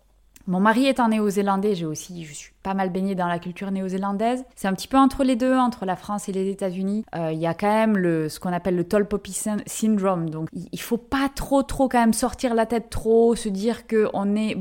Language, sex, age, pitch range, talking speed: French, female, 20-39, 180-230 Hz, 250 wpm